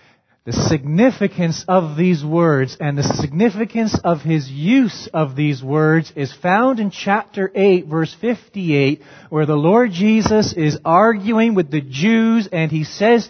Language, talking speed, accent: English, 150 wpm, American